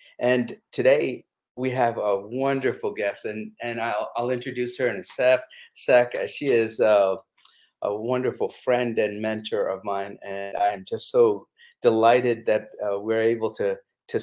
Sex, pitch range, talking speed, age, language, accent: male, 115-160 Hz, 160 wpm, 50-69, English, American